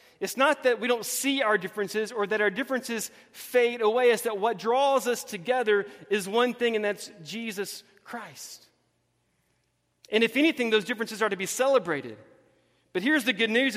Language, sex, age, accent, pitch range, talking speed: English, male, 30-49, American, 170-230 Hz, 180 wpm